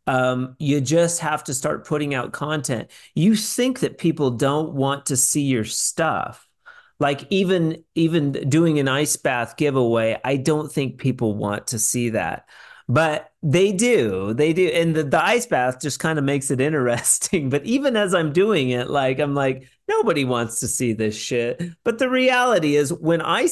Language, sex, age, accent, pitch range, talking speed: English, male, 40-59, American, 120-160 Hz, 185 wpm